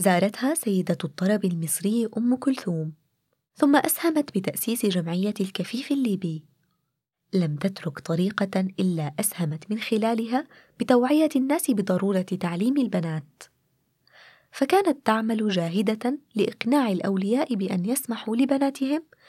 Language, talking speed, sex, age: Arabic, 100 wpm, female, 20-39